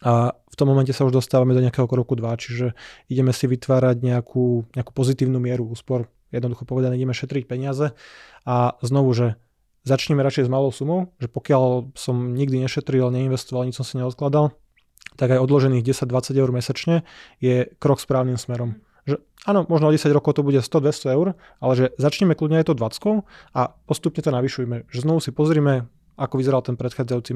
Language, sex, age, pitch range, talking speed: Slovak, male, 20-39, 125-145 Hz, 180 wpm